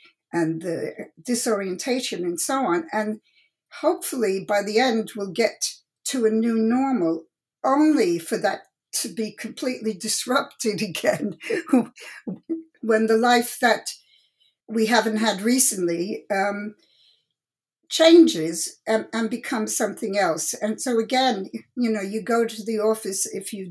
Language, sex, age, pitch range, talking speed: English, female, 60-79, 200-260 Hz, 130 wpm